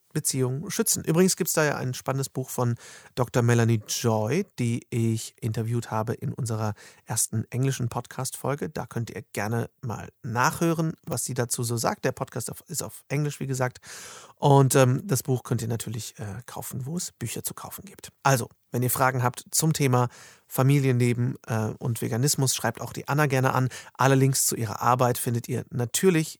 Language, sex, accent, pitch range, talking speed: German, male, German, 120-145 Hz, 185 wpm